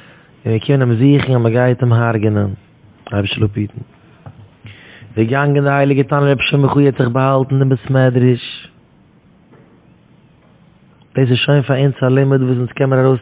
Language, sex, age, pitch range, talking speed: English, male, 20-39, 130-145 Hz, 150 wpm